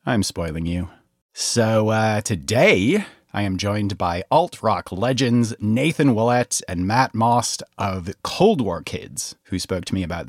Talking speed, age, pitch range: 150 wpm, 30-49, 95-135 Hz